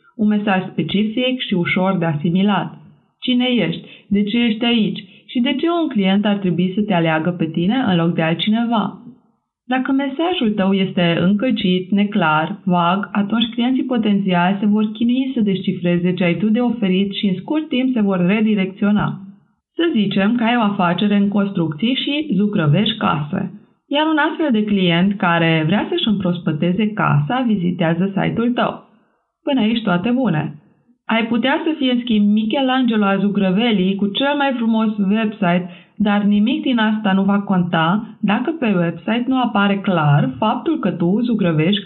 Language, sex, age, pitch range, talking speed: Romanian, female, 20-39, 185-235 Hz, 165 wpm